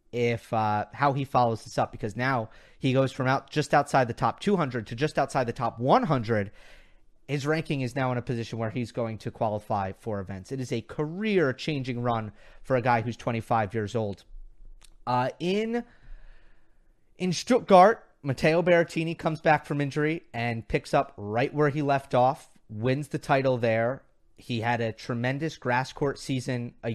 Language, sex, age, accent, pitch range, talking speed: English, male, 30-49, American, 115-145 Hz, 180 wpm